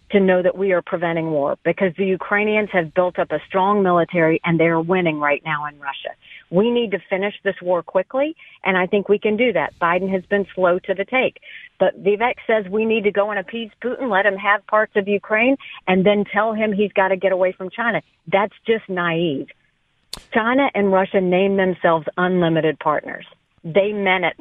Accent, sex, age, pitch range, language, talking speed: American, female, 50-69, 180-210 Hz, English, 210 wpm